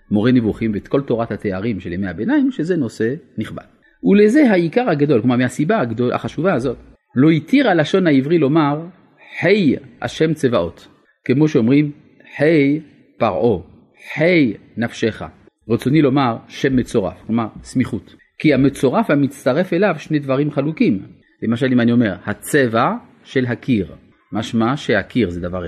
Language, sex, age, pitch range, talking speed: Hebrew, male, 40-59, 105-150 Hz, 135 wpm